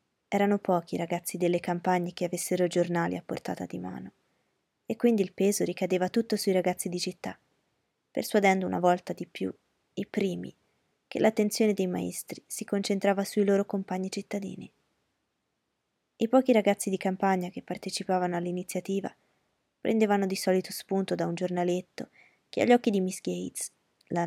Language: Italian